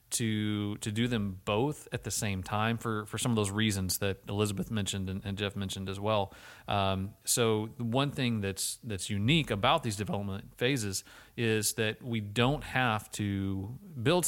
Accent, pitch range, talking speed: American, 100-115 Hz, 180 wpm